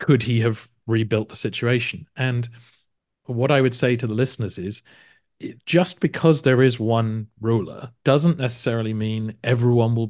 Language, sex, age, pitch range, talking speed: English, male, 40-59, 110-130 Hz, 155 wpm